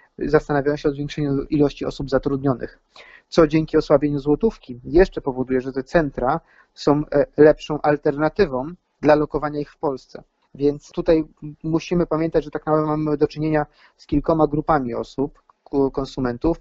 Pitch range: 135-155 Hz